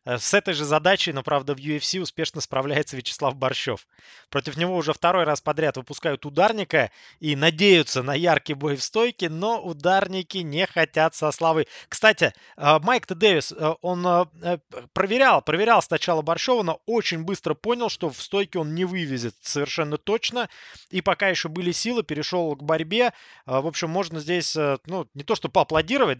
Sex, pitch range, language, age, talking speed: male, 145-190 Hz, Russian, 20-39, 160 wpm